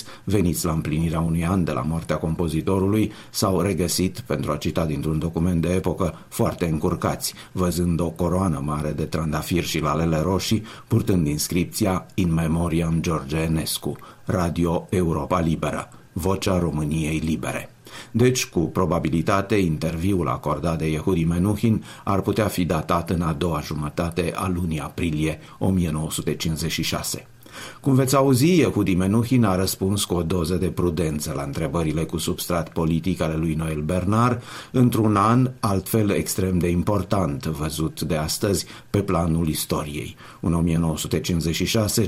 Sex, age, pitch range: male, 50-69, 80-100 Hz